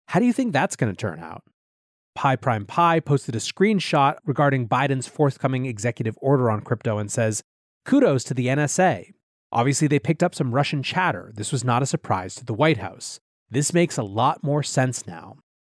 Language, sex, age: English, male, 30-49